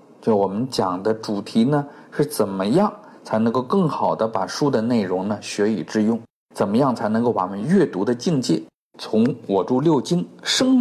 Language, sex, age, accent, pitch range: Chinese, male, 50-69, native, 115-175 Hz